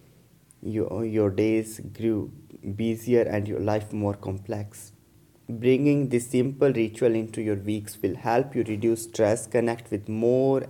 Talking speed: 140 wpm